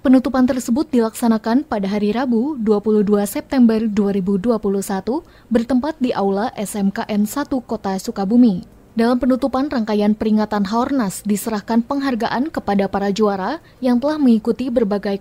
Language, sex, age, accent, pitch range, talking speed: Indonesian, female, 20-39, native, 205-255 Hz, 120 wpm